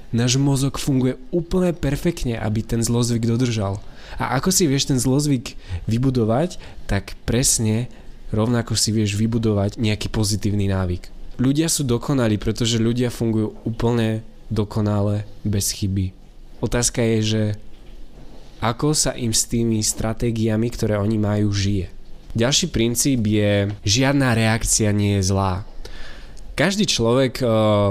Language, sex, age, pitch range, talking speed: Slovak, male, 20-39, 105-125 Hz, 125 wpm